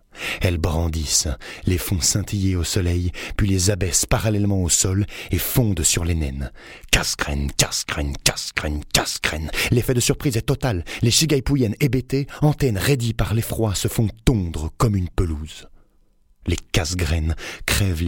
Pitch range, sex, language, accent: 85-110 Hz, male, French, French